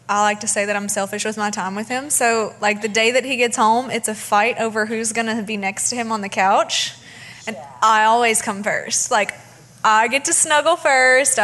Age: 20-39